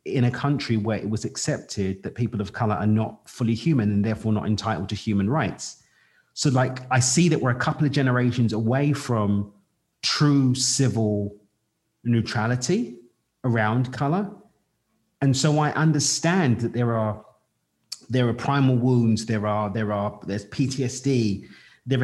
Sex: male